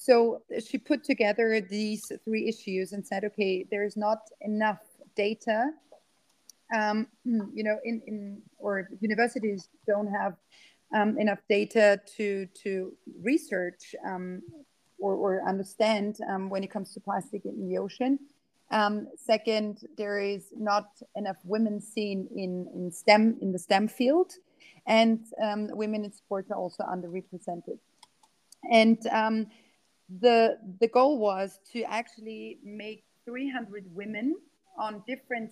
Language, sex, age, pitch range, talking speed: English, female, 30-49, 200-230 Hz, 130 wpm